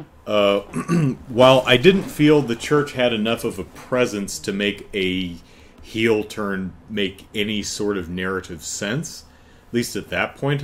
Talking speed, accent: 160 wpm, American